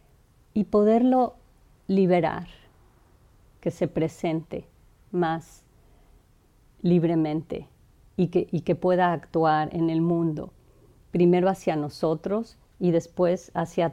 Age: 40-59